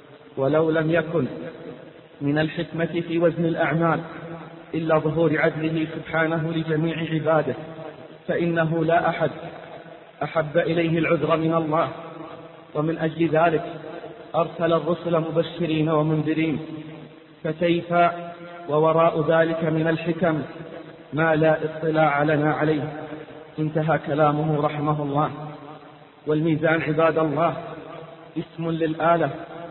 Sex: male